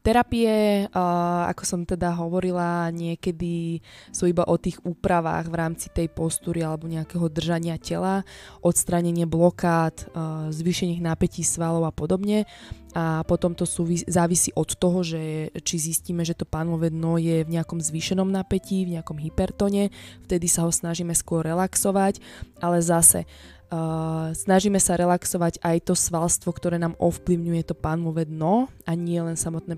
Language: Slovak